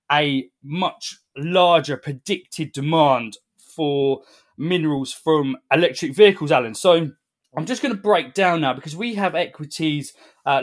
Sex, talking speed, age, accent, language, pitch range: male, 135 wpm, 20-39, British, English, 135-170 Hz